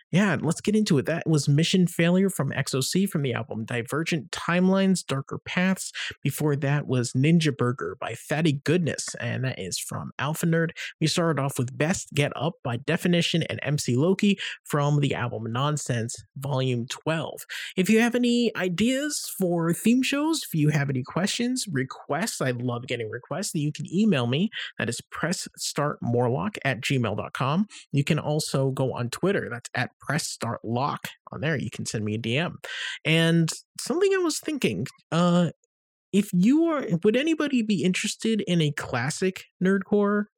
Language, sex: English, male